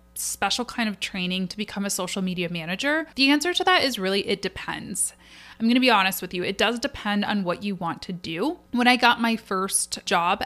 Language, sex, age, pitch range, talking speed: English, female, 20-39, 180-225 Hz, 230 wpm